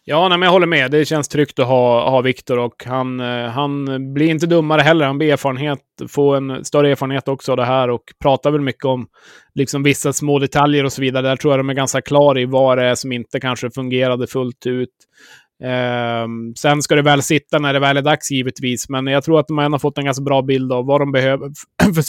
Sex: male